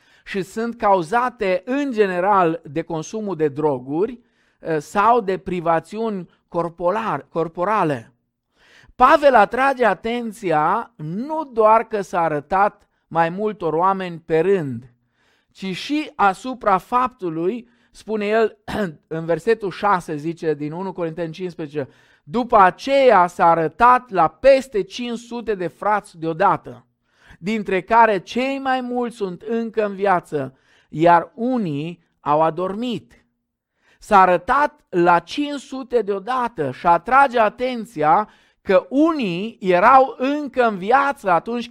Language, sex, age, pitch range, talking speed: Romanian, male, 50-69, 155-230 Hz, 110 wpm